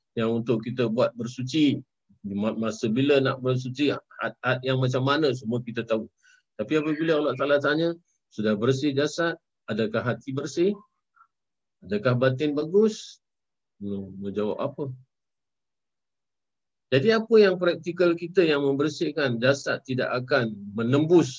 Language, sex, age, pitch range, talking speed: Malay, male, 50-69, 120-160 Hz, 125 wpm